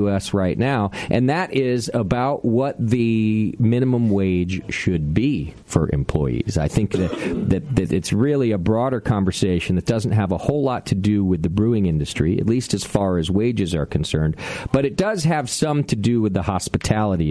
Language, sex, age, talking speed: English, male, 40-59, 190 wpm